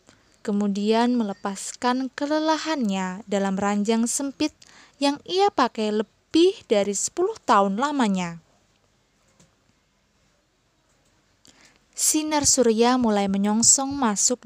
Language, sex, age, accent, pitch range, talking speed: Indonesian, female, 20-39, native, 210-290 Hz, 80 wpm